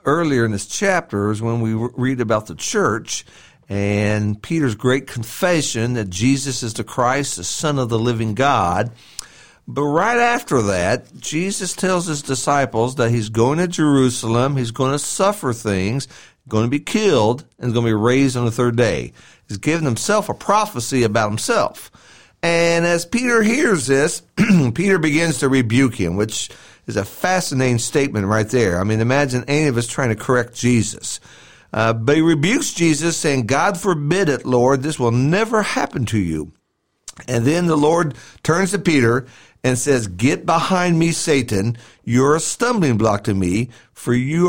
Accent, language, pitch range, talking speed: American, English, 115-160 Hz, 175 wpm